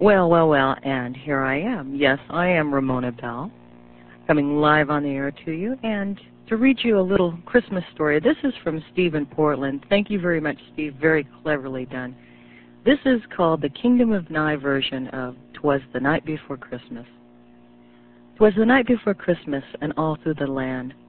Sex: female